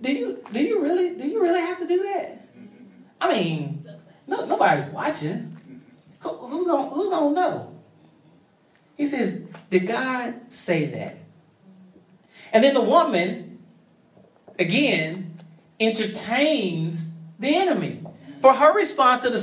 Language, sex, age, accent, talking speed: English, male, 30-49, American, 125 wpm